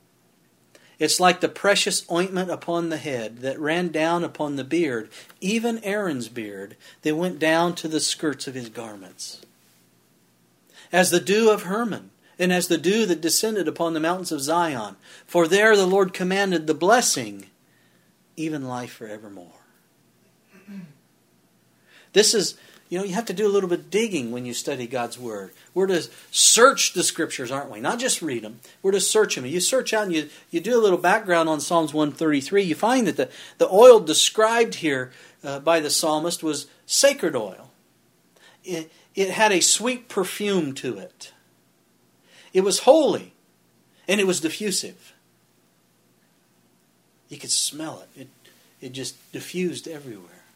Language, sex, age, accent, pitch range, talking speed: English, male, 50-69, American, 125-195 Hz, 165 wpm